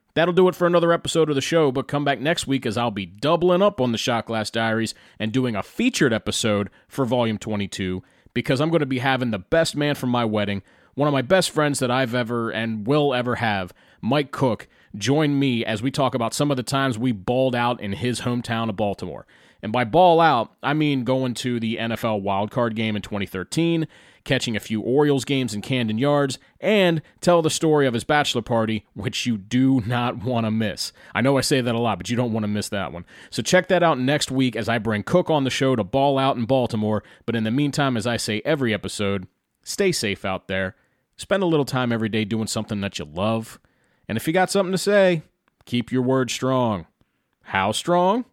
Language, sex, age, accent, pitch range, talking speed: English, male, 30-49, American, 110-145 Hz, 225 wpm